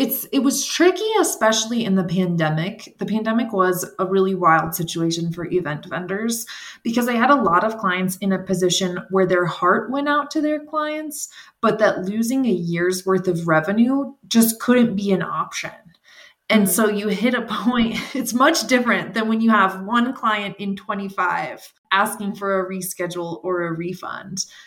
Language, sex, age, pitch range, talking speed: English, female, 20-39, 185-235 Hz, 180 wpm